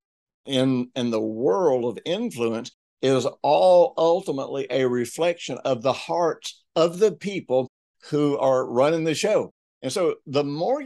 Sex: male